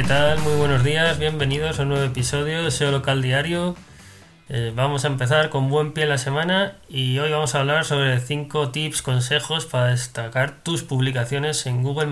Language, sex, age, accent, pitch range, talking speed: Spanish, male, 20-39, Spanish, 125-145 Hz, 195 wpm